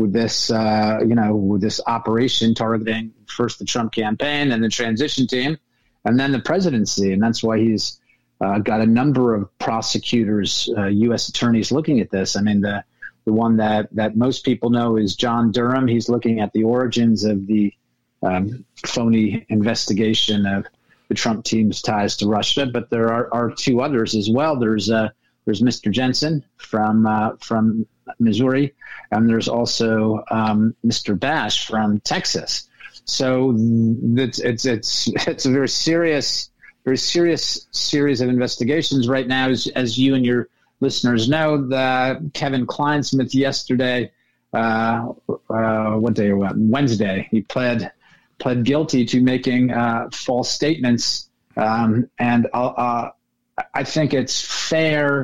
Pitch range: 110-130 Hz